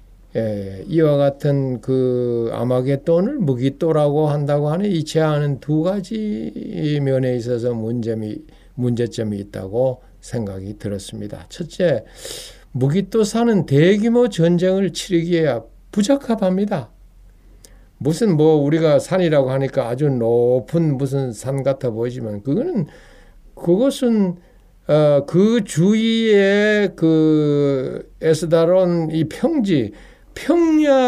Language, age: Korean, 60-79